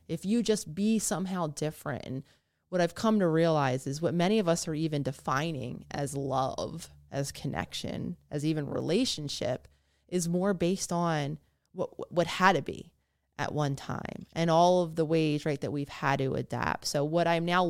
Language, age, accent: English, 20-39, American